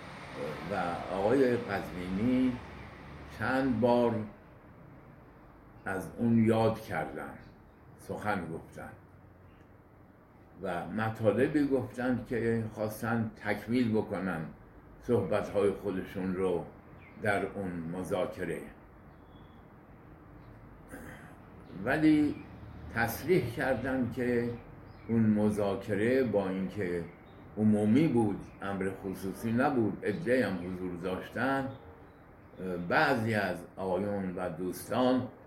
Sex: male